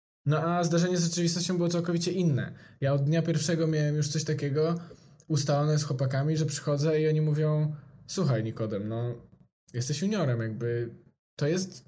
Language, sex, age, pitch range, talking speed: Polish, male, 20-39, 135-170 Hz, 160 wpm